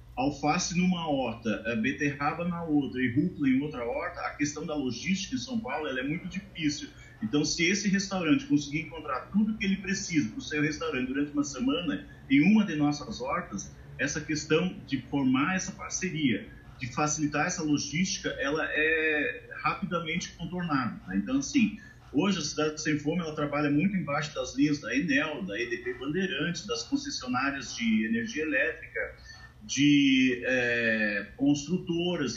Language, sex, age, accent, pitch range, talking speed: Portuguese, male, 30-49, Brazilian, 145-185 Hz, 160 wpm